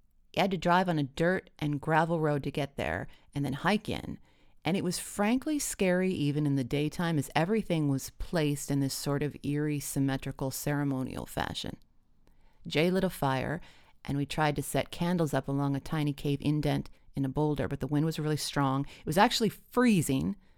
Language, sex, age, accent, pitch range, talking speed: English, female, 30-49, American, 140-170 Hz, 195 wpm